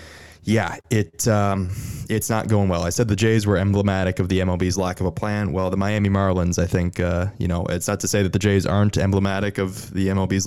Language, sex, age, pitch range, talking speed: English, male, 20-39, 95-115 Hz, 235 wpm